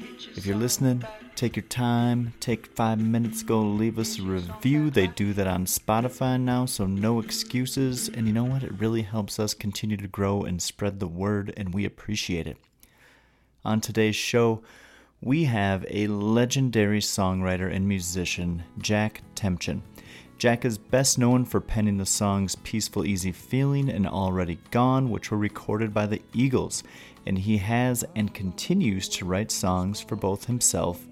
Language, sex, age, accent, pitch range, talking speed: English, male, 30-49, American, 100-120 Hz, 165 wpm